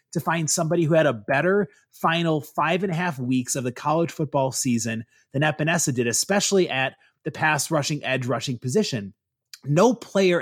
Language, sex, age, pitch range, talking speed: English, male, 30-49, 130-170 Hz, 180 wpm